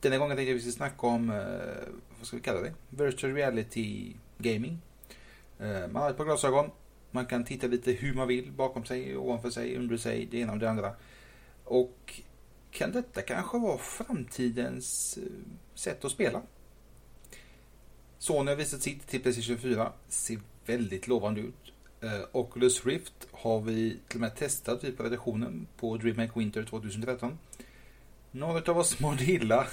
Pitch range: 115-130 Hz